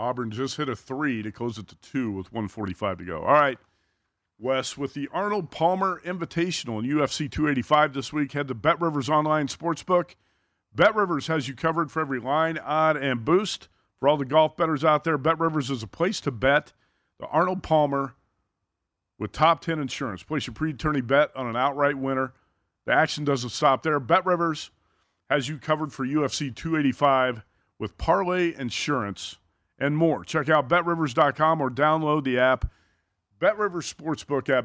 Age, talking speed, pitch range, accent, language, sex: 40-59, 180 wpm, 120-155 Hz, American, English, male